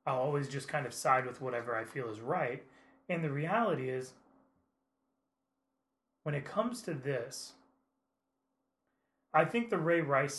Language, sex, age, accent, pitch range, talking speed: English, male, 30-49, American, 125-155 Hz, 150 wpm